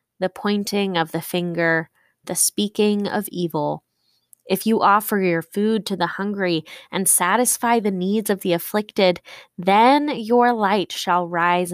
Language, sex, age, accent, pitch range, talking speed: English, female, 20-39, American, 165-190 Hz, 150 wpm